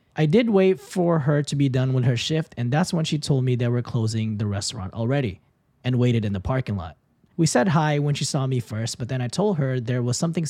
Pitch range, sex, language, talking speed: 120-155 Hz, male, English, 255 wpm